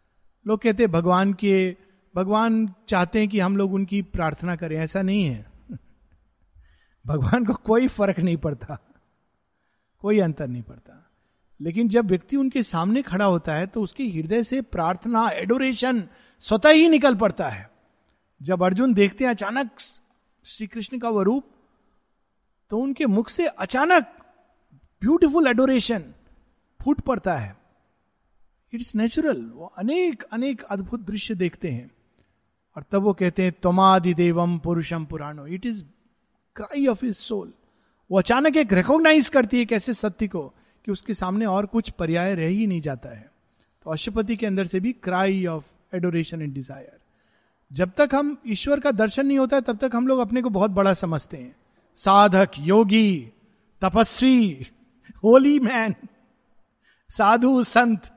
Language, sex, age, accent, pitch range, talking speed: Hindi, male, 50-69, native, 180-245 Hz, 150 wpm